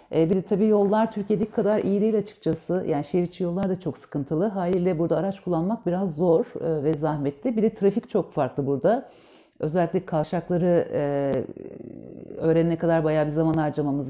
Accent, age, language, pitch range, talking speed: native, 50-69, Turkish, 165-215 Hz, 160 wpm